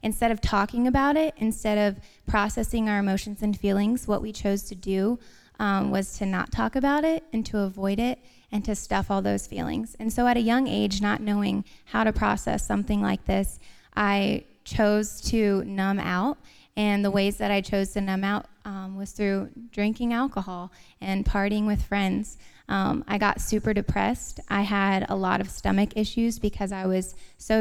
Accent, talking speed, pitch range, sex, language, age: American, 190 wpm, 195-220 Hz, female, English, 20-39